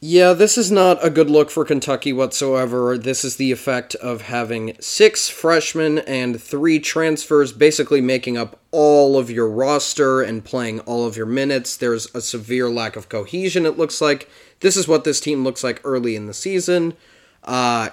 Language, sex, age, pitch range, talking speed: English, male, 20-39, 110-150 Hz, 185 wpm